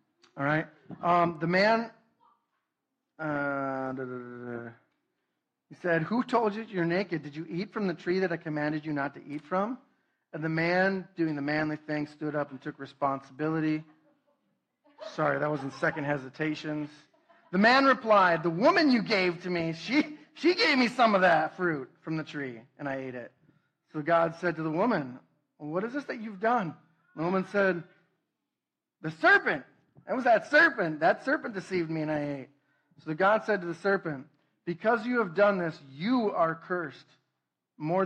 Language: English